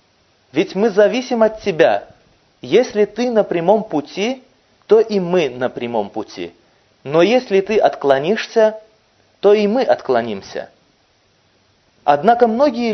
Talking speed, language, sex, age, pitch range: 120 wpm, Russian, male, 30-49, 160-225 Hz